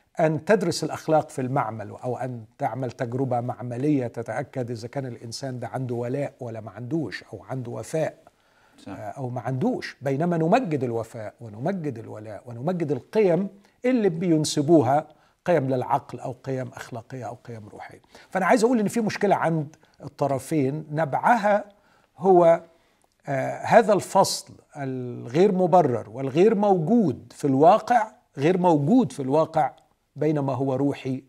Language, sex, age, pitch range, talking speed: Arabic, male, 50-69, 120-160 Hz, 130 wpm